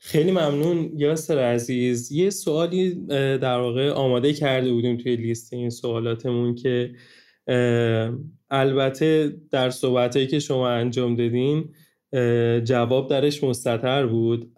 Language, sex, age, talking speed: Persian, male, 20-39, 110 wpm